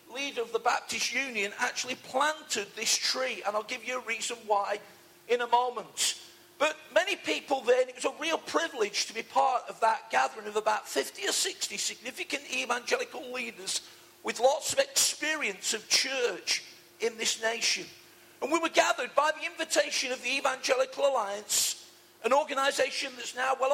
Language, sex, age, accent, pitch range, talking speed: English, male, 50-69, British, 240-305 Hz, 170 wpm